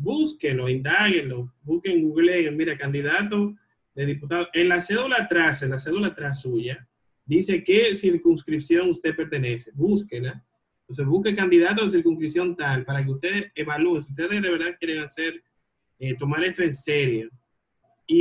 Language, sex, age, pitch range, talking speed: Spanish, male, 30-49, 140-175 Hz, 150 wpm